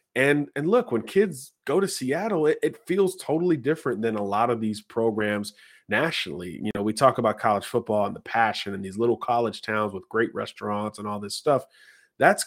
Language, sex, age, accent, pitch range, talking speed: English, male, 30-49, American, 100-125 Hz, 205 wpm